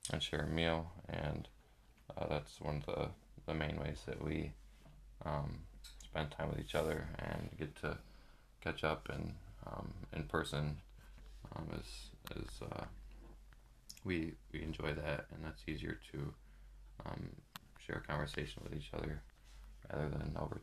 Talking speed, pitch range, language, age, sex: 150 wpm, 75-80 Hz, English, 20-39, male